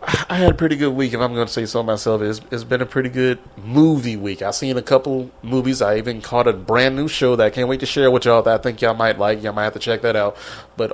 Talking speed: 300 wpm